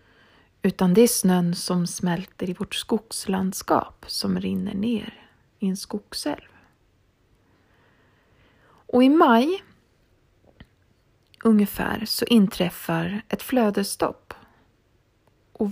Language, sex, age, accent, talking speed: Swedish, female, 30-49, native, 90 wpm